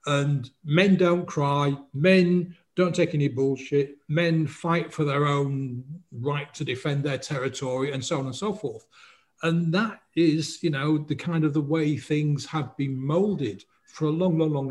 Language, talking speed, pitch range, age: English, 180 wpm, 140-180 Hz, 50-69